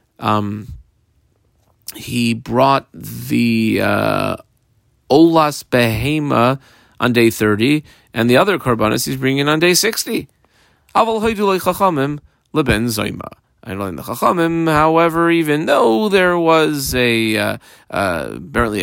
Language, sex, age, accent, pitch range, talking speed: English, male, 40-59, American, 110-145 Hz, 110 wpm